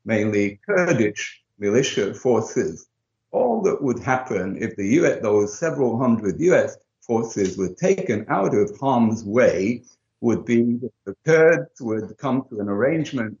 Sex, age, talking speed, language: male, 60-79, 140 wpm, English